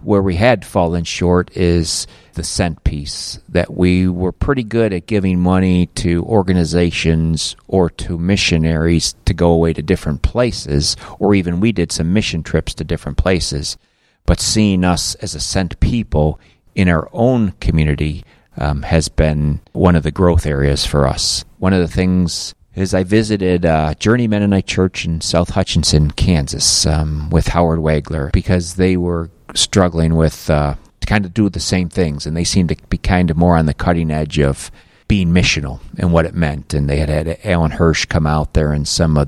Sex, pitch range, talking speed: male, 75-95 Hz, 185 wpm